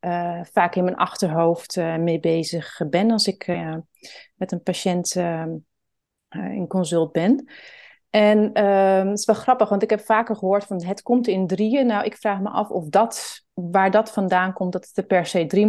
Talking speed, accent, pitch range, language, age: 205 wpm, Dutch, 175-205 Hz, Dutch, 30-49